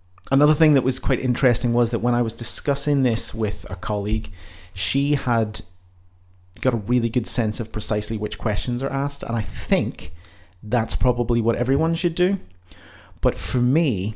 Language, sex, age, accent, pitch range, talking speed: English, male, 30-49, British, 95-125 Hz, 175 wpm